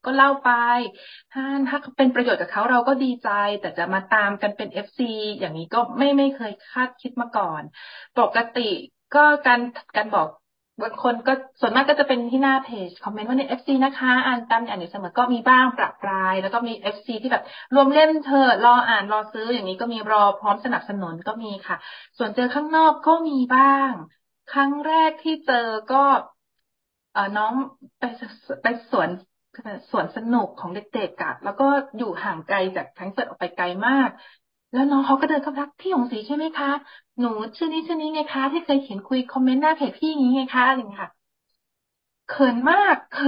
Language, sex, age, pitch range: Thai, female, 20-39, 225-280 Hz